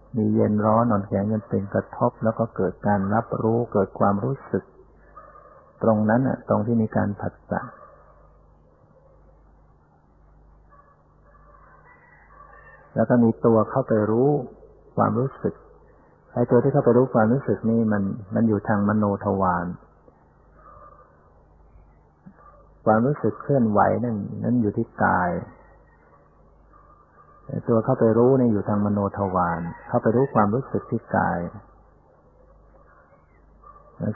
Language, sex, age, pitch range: Thai, male, 60-79, 100-120 Hz